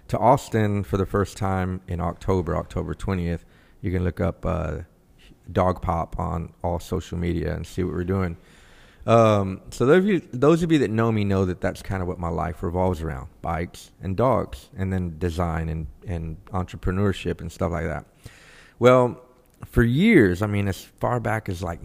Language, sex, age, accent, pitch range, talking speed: English, male, 30-49, American, 90-105 Hz, 190 wpm